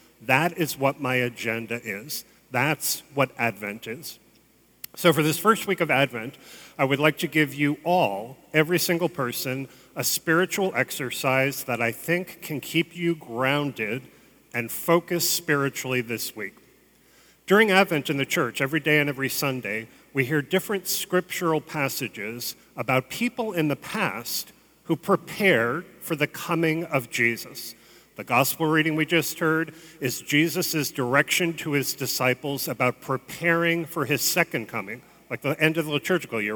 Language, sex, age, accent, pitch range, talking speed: English, male, 40-59, American, 130-170 Hz, 155 wpm